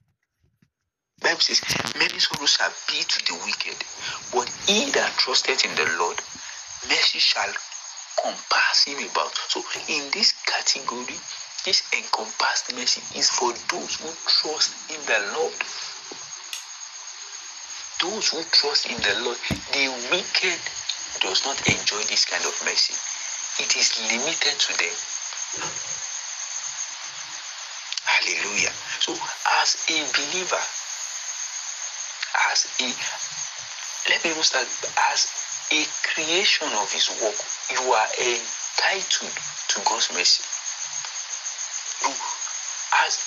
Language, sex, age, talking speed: English, male, 60-79, 110 wpm